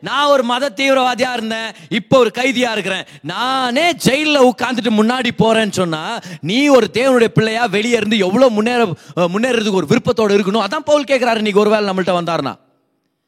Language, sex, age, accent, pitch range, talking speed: Tamil, male, 30-49, native, 185-260 Hz, 80 wpm